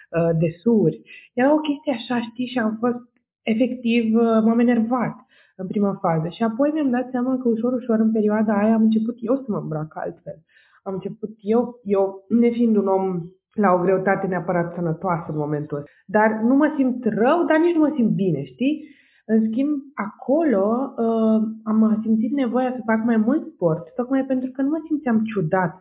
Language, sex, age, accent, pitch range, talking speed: Romanian, female, 20-39, native, 175-245 Hz, 185 wpm